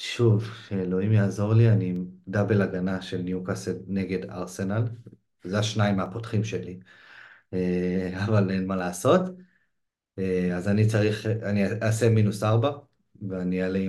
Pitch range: 95-120 Hz